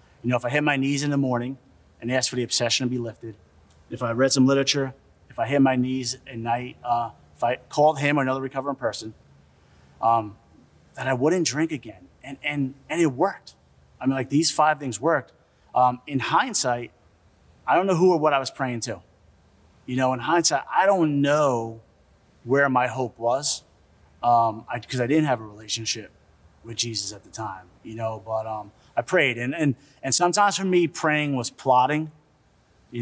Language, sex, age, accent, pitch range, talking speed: English, male, 30-49, American, 110-140 Hz, 200 wpm